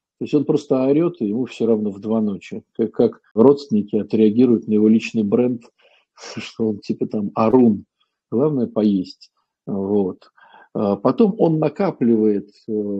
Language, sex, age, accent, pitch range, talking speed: Russian, male, 50-69, native, 110-150 Hz, 140 wpm